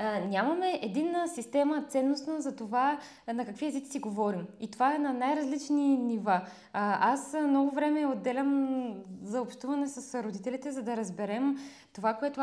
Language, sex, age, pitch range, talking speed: Bulgarian, female, 20-39, 215-270 Hz, 150 wpm